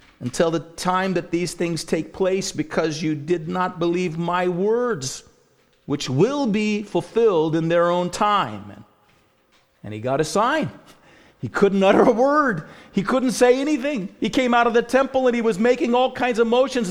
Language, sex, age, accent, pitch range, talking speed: English, male, 50-69, American, 135-230 Hz, 180 wpm